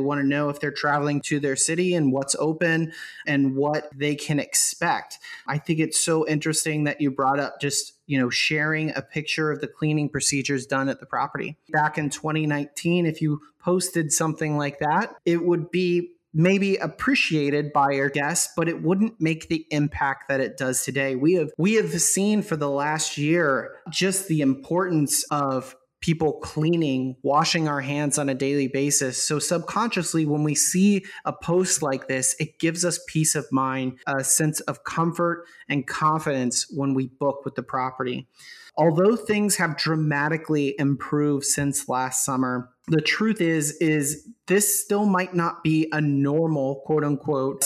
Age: 30-49